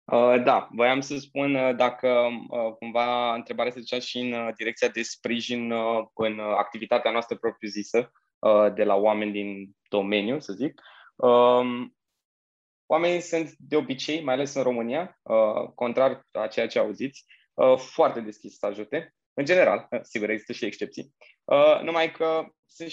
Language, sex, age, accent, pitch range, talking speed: Romanian, male, 20-39, native, 110-130 Hz, 135 wpm